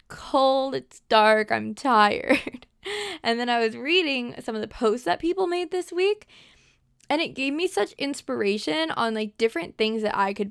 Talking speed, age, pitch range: 185 wpm, 20-39, 220-285 Hz